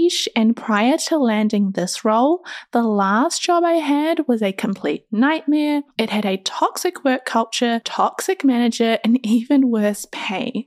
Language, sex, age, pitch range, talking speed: English, female, 10-29, 210-280 Hz, 150 wpm